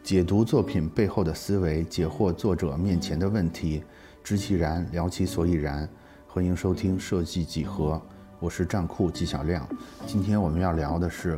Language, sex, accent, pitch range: Chinese, male, native, 80-95 Hz